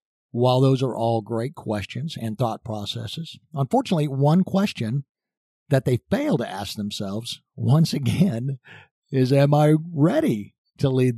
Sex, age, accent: male, 50-69, American